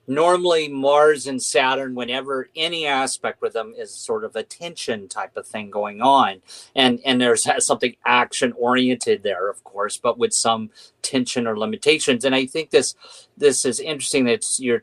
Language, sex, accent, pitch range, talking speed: English, male, American, 125-180 Hz, 175 wpm